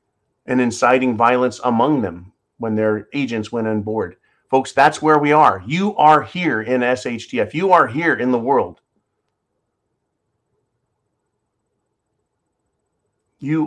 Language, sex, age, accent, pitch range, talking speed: English, male, 40-59, American, 105-135 Hz, 125 wpm